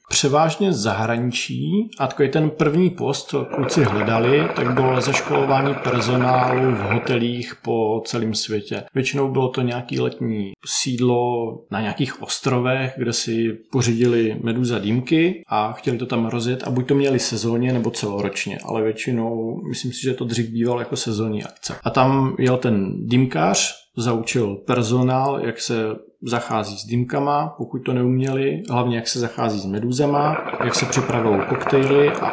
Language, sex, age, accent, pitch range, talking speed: Czech, male, 40-59, native, 115-130 Hz, 150 wpm